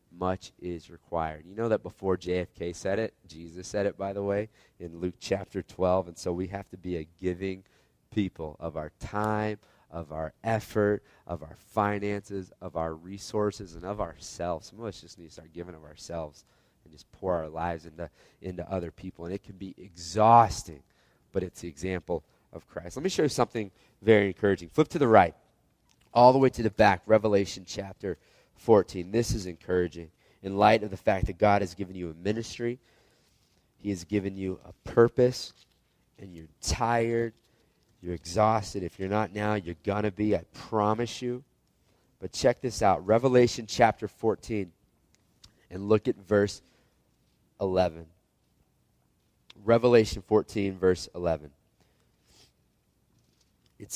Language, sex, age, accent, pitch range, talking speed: English, male, 30-49, American, 90-110 Hz, 165 wpm